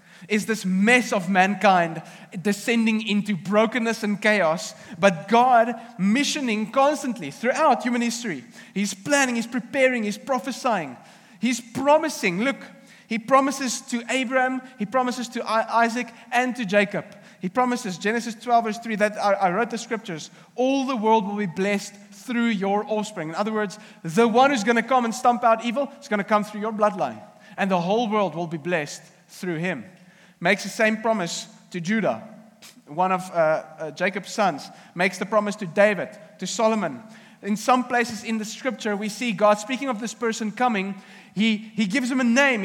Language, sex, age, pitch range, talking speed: English, male, 30-49, 200-240 Hz, 175 wpm